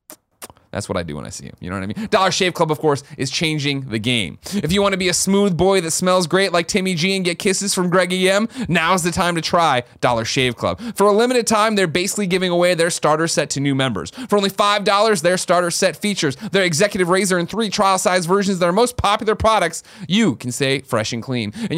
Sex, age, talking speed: male, 30-49, 250 wpm